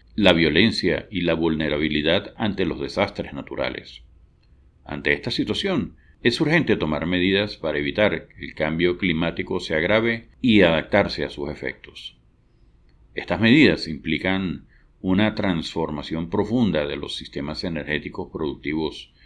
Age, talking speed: 50-69, 125 wpm